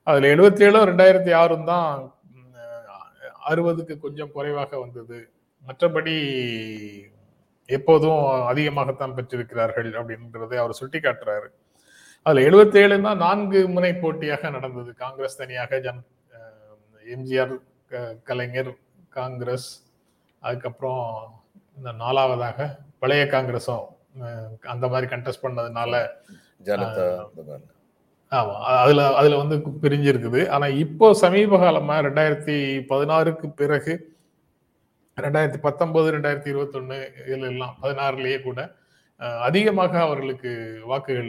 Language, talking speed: Tamil, 90 wpm